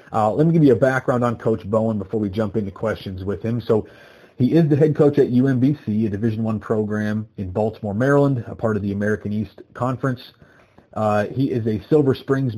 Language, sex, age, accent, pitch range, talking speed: English, male, 30-49, American, 105-120 Hz, 215 wpm